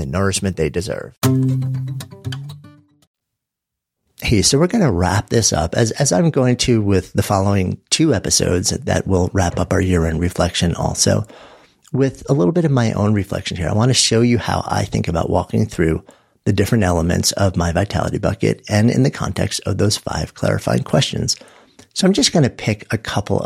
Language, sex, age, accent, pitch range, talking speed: English, male, 50-69, American, 90-125 Hz, 190 wpm